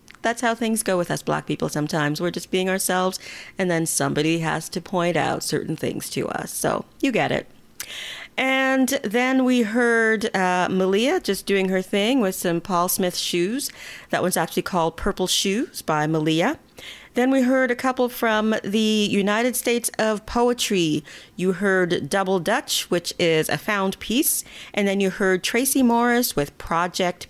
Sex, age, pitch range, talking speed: female, 40-59, 175-230 Hz, 175 wpm